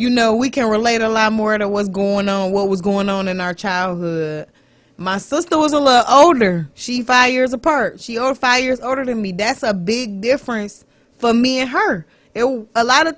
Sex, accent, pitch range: female, American, 215-280 Hz